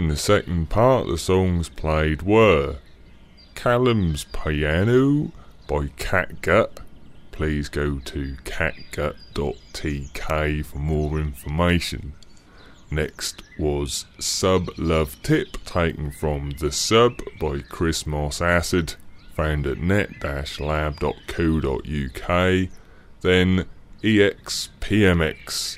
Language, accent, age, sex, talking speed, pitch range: English, British, 30-49, female, 85 wpm, 75-95 Hz